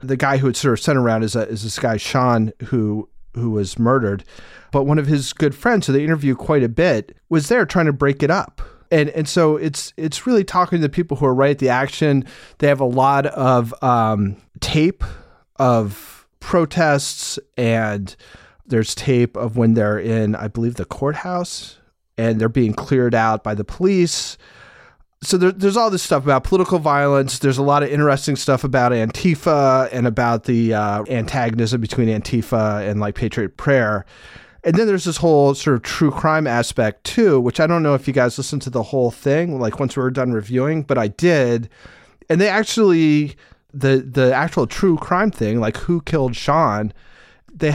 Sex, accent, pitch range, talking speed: male, American, 115-155 Hz, 195 wpm